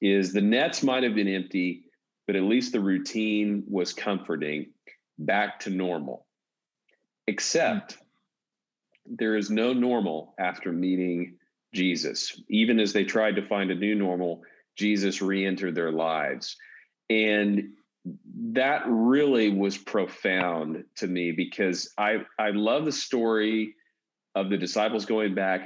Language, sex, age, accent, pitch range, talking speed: English, male, 40-59, American, 95-110 Hz, 130 wpm